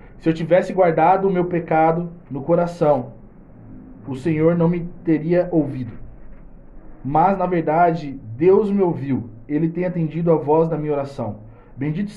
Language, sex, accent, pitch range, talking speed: Portuguese, male, Brazilian, 135-175 Hz, 150 wpm